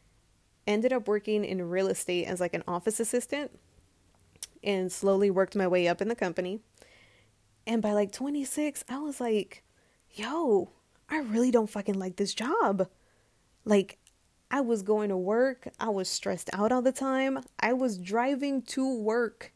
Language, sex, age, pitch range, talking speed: English, female, 20-39, 185-250 Hz, 165 wpm